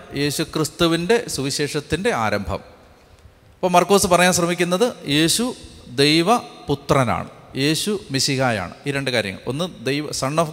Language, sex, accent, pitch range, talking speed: Malayalam, male, native, 135-185 Hz, 110 wpm